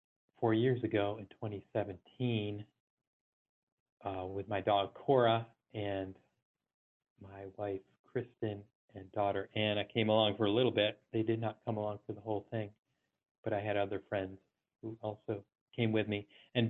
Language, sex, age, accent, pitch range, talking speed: English, male, 40-59, American, 100-115 Hz, 155 wpm